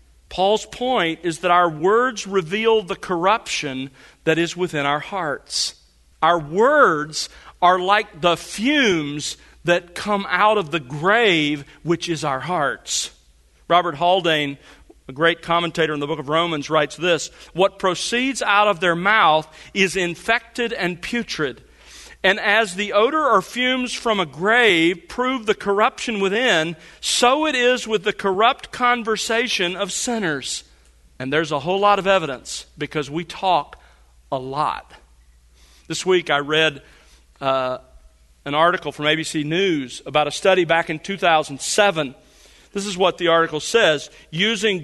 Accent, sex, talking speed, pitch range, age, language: American, male, 145 wpm, 150-205 Hz, 40-59, English